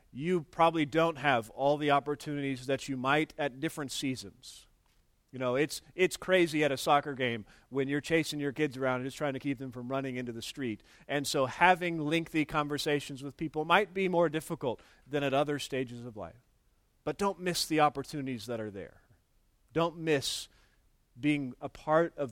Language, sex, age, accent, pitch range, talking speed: English, male, 40-59, American, 125-155 Hz, 190 wpm